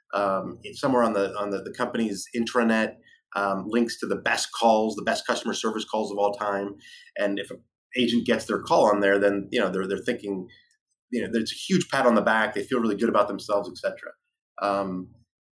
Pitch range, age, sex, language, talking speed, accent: 105-135 Hz, 30-49, male, English, 220 wpm, American